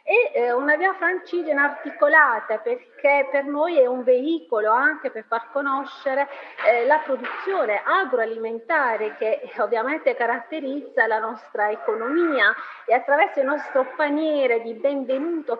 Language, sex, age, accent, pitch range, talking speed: Italian, female, 30-49, native, 235-315 Hz, 120 wpm